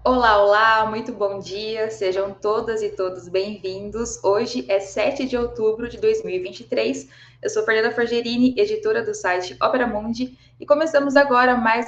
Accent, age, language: Brazilian, 20-39, Portuguese